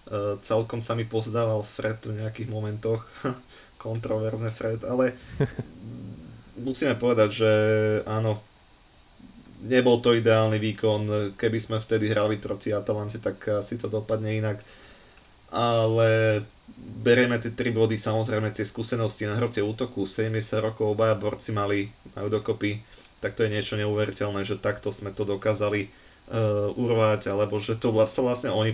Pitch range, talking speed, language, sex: 100-110 Hz, 140 wpm, Slovak, male